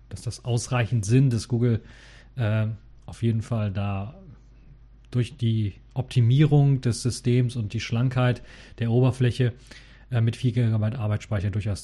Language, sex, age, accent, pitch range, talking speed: German, male, 30-49, German, 115-140 Hz, 135 wpm